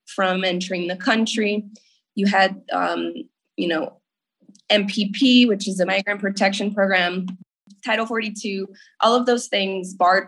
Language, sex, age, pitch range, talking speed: English, female, 20-39, 185-220 Hz, 125 wpm